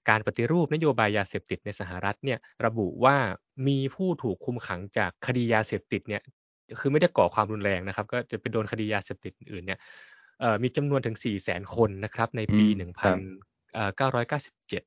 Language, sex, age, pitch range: Thai, male, 20-39, 100-130 Hz